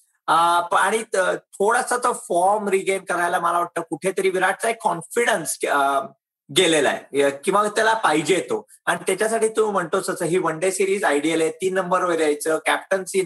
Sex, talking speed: male, 140 wpm